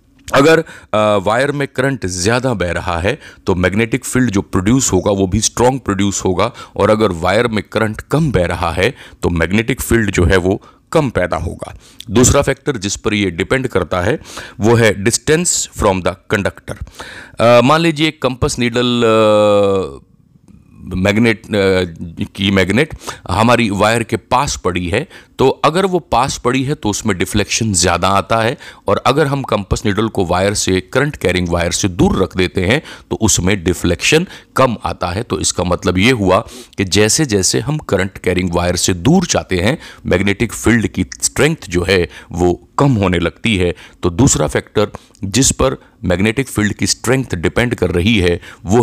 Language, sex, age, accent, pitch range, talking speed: Hindi, male, 30-49, native, 95-120 Hz, 170 wpm